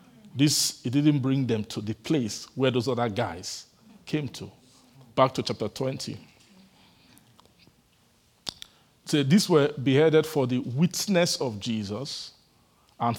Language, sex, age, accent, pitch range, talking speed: English, male, 50-69, Nigerian, 110-135 Hz, 125 wpm